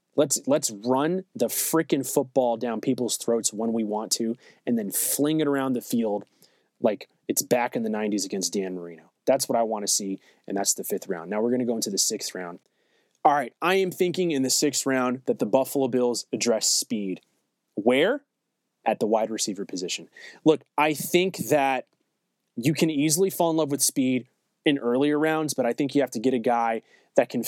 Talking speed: 210 wpm